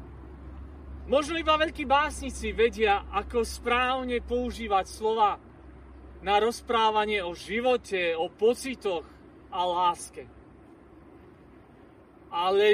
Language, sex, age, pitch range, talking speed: Slovak, male, 40-59, 210-270 Hz, 85 wpm